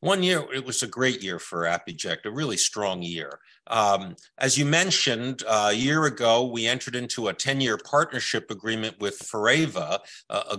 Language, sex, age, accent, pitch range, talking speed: English, male, 50-69, American, 115-155 Hz, 185 wpm